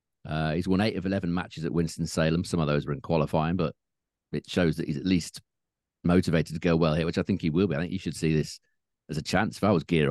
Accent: British